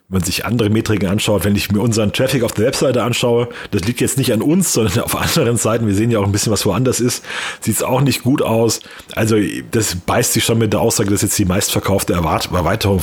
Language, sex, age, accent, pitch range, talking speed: German, male, 30-49, German, 100-120 Hz, 245 wpm